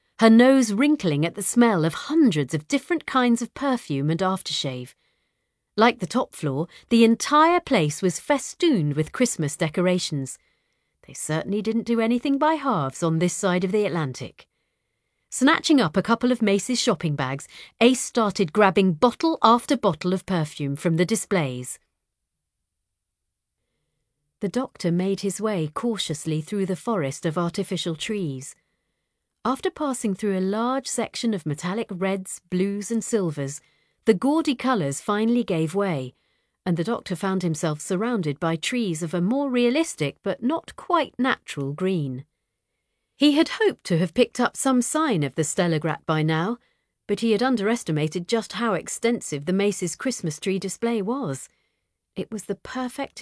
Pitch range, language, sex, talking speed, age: 160-235 Hz, English, female, 155 wpm, 40-59